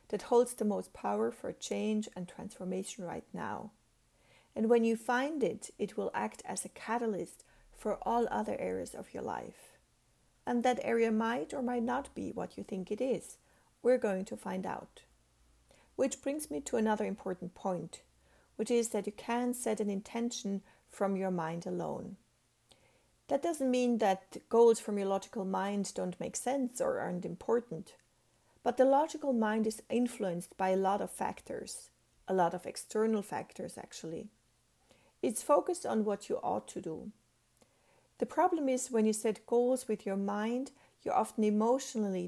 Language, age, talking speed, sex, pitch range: English, 40-59, 170 wpm, female, 195-245 Hz